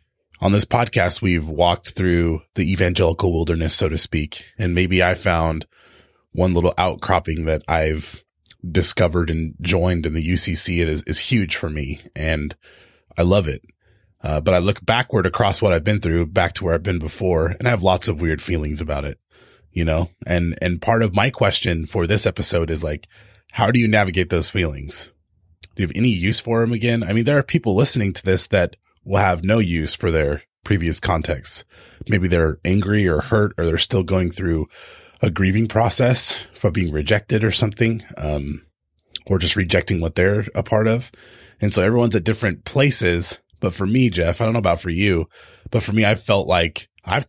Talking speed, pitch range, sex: 200 wpm, 85-110 Hz, male